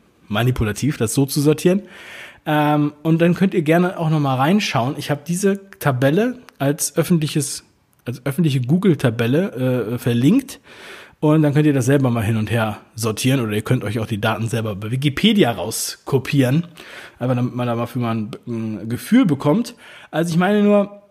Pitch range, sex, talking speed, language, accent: 125-175 Hz, male, 175 wpm, German, German